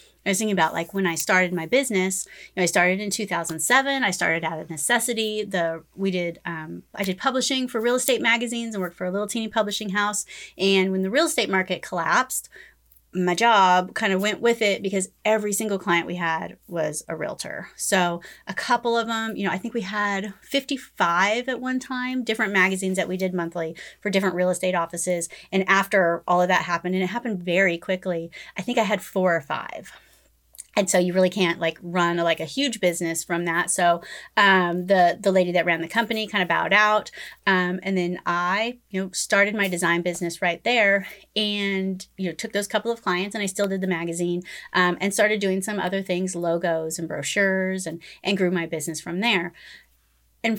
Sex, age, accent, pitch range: female, 30-49, American, 175-220 Hz